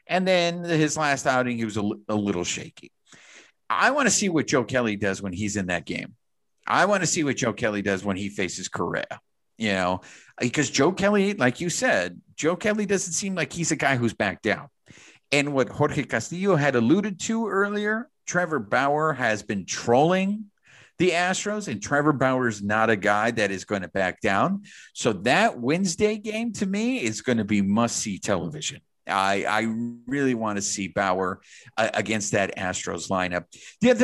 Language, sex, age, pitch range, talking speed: English, male, 50-69, 100-150 Hz, 190 wpm